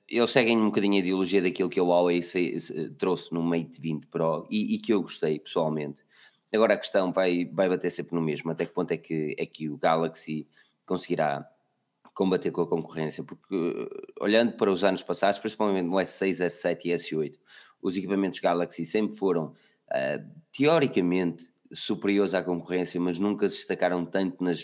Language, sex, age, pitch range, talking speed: Portuguese, male, 20-39, 80-105 Hz, 175 wpm